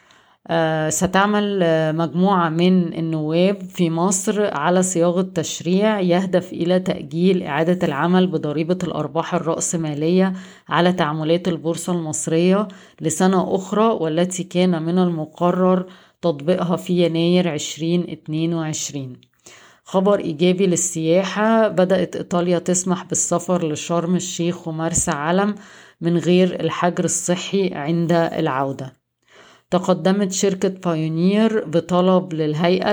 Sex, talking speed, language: female, 95 wpm, Arabic